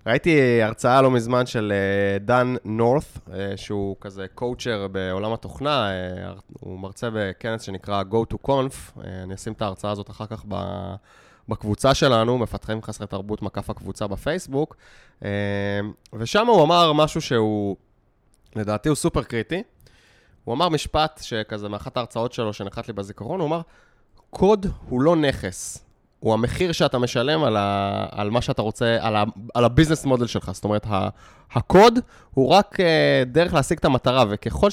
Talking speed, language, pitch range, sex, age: 145 wpm, Hebrew, 100-135 Hz, male, 20-39